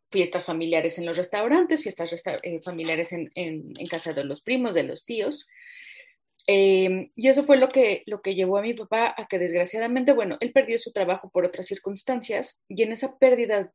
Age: 30-49